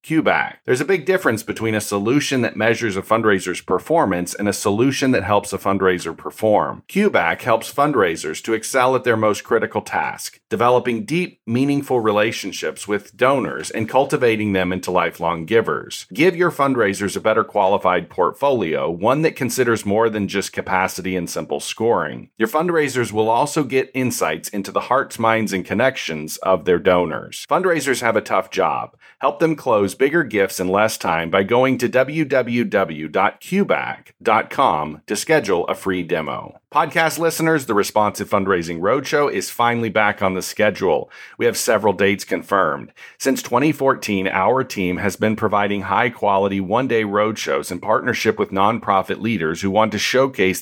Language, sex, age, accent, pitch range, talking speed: English, male, 40-59, American, 95-130 Hz, 160 wpm